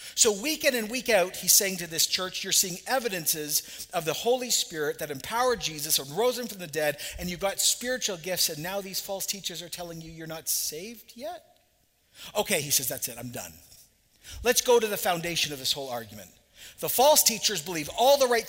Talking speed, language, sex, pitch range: 215 wpm, English, male, 150-220 Hz